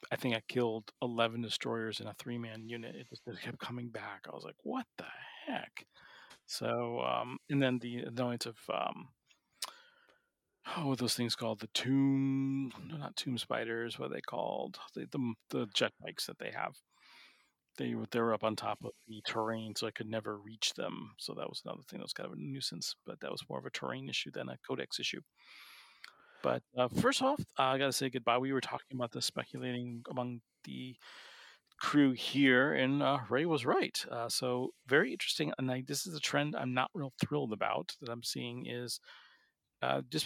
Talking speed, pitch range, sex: 200 wpm, 115-130 Hz, male